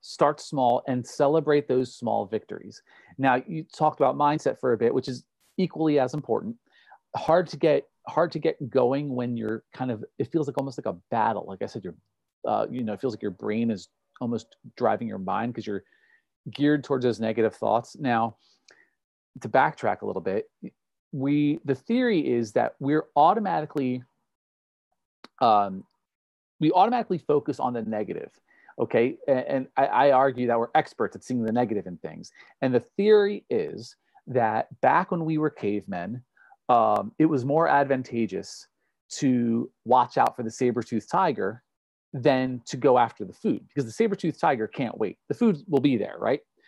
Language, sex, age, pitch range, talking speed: English, male, 40-59, 120-160 Hz, 175 wpm